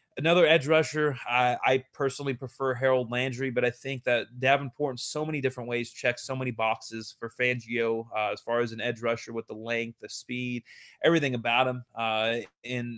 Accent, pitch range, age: American, 115-130 Hz, 30-49